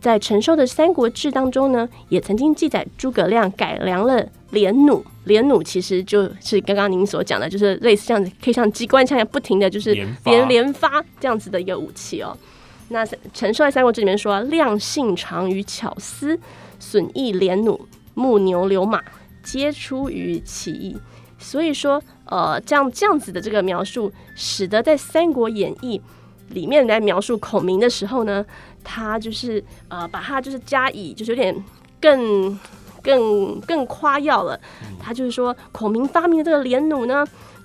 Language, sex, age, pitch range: Chinese, female, 20-39, 205-275 Hz